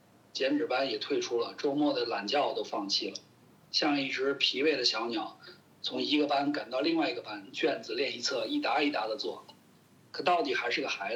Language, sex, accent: Chinese, male, native